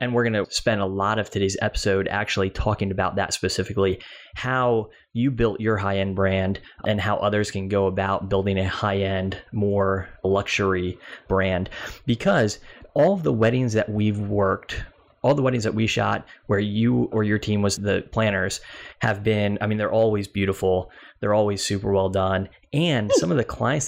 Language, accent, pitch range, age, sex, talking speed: English, American, 95-110 Hz, 20-39, male, 180 wpm